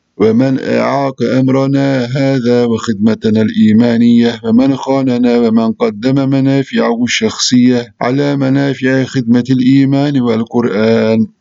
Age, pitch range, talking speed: 50-69, 115-135 Hz, 90 wpm